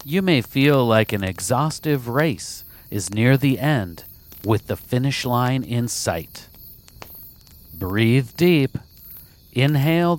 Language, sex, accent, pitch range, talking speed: English, male, American, 100-145 Hz, 120 wpm